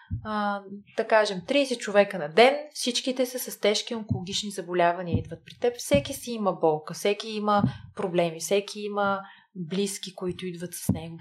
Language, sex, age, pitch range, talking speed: Bulgarian, female, 20-39, 175-225 Hz, 155 wpm